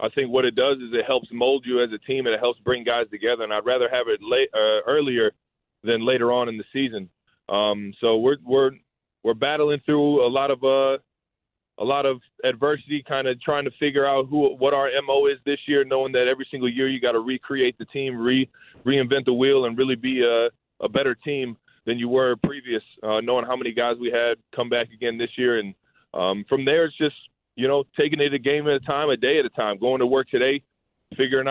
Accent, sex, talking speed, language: American, male, 235 wpm, English